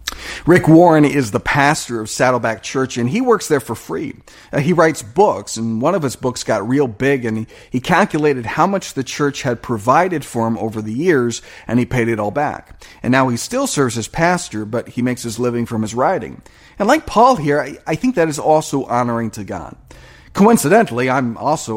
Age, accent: 40-59, American